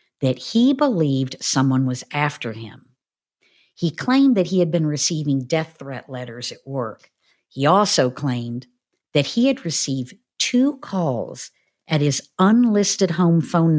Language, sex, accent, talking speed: English, female, American, 145 wpm